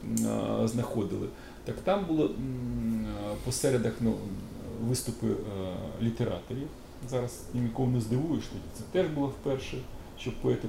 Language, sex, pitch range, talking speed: Ukrainian, male, 110-140 Hz, 105 wpm